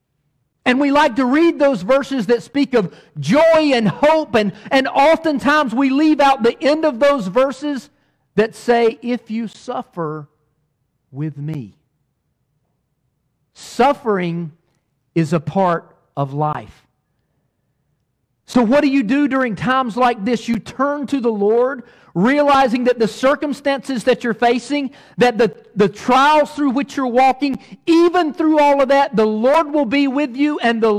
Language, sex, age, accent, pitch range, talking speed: English, male, 50-69, American, 175-275 Hz, 155 wpm